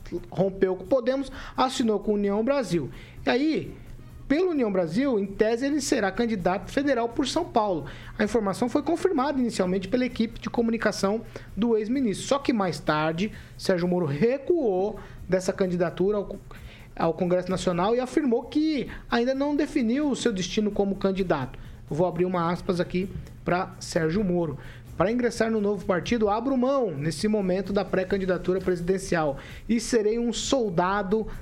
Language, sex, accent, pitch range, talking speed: Portuguese, male, Brazilian, 175-235 Hz, 155 wpm